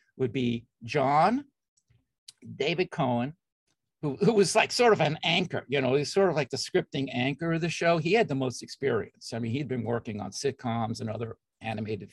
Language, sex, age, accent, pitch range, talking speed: English, male, 50-69, American, 120-170 Hz, 200 wpm